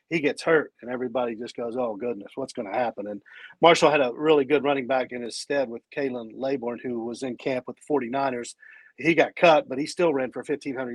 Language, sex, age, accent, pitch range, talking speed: English, male, 40-59, American, 135-165 Hz, 235 wpm